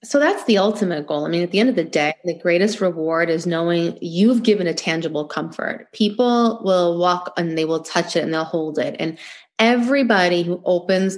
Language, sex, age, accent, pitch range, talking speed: English, female, 30-49, American, 170-215 Hz, 210 wpm